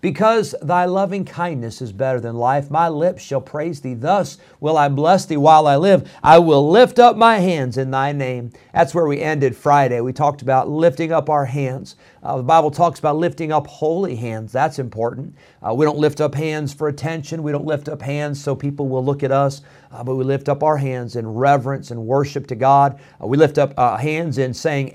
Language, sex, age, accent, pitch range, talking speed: English, male, 40-59, American, 130-155 Hz, 225 wpm